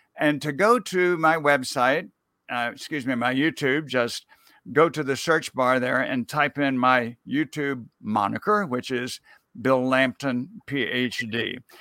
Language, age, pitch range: English, 60-79, 125-155 Hz